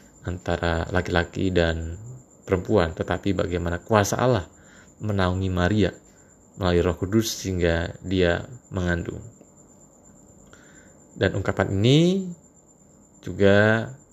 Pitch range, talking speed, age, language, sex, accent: 90-110 Hz, 85 wpm, 30-49, Indonesian, male, native